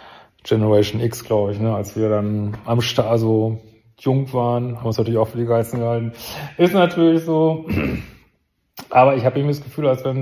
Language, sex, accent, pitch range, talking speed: German, male, German, 115-130 Hz, 200 wpm